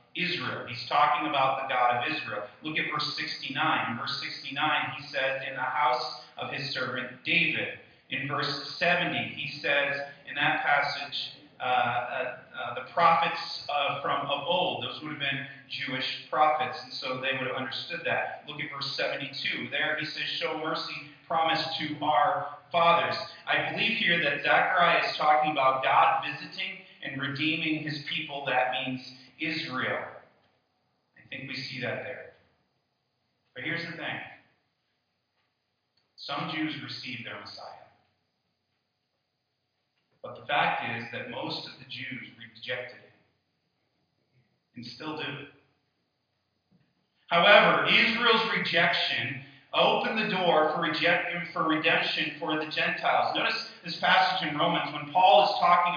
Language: English